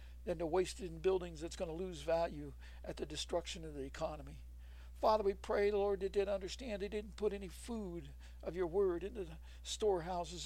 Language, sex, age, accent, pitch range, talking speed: English, male, 60-79, American, 170-205 Hz, 195 wpm